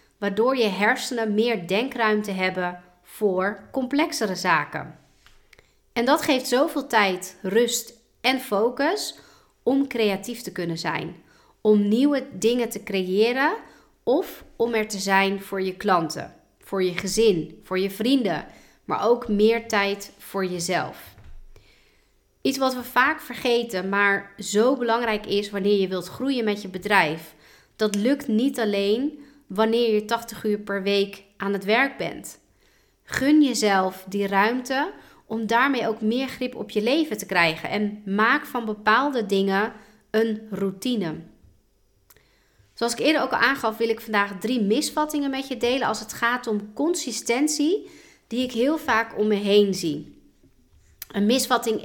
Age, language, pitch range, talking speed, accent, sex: 40-59, Dutch, 200-245 Hz, 145 wpm, Dutch, female